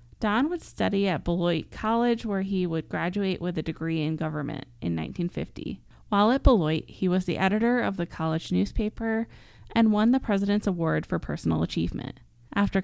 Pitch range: 165-220 Hz